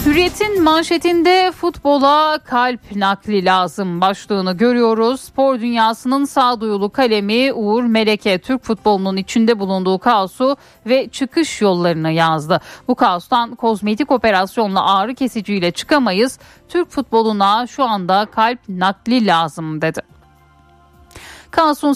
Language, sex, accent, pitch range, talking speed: Turkish, female, native, 195-260 Hz, 105 wpm